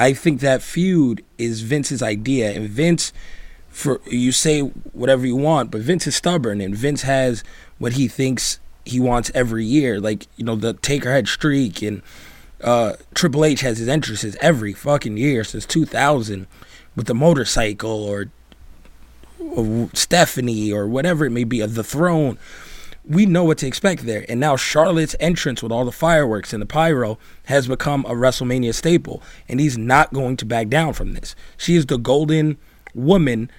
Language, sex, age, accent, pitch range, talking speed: English, male, 20-39, American, 115-155 Hz, 175 wpm